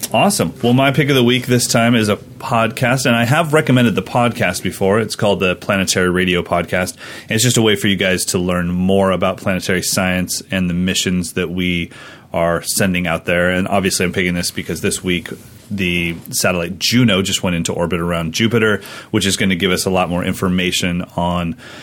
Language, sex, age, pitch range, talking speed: English, male, 30-49, 90-115 Hz, 205 wpm